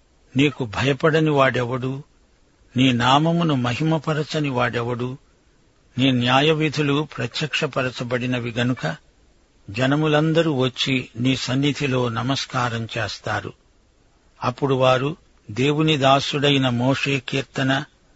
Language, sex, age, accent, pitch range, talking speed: Telugu, male, 60-79, native, 125-145 Hz, 80 wpm